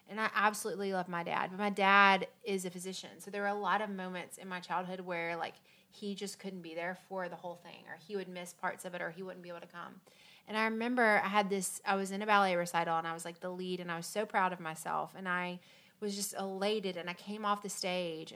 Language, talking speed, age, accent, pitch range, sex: English, 270 wpm, 30-49, American, 180-210 Hz, female